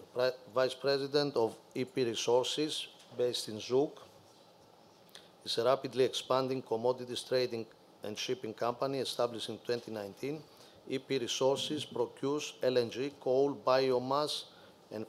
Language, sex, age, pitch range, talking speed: English, male, 50-69, 120-140 Hz, 110 wpm